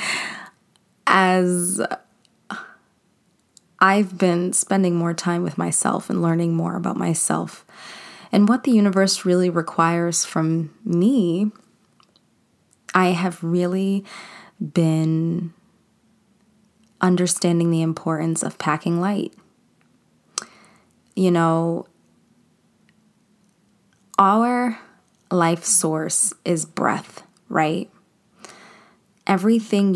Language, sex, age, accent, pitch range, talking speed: English, female, 20-39, American, 165-200 Hz, 80 wpm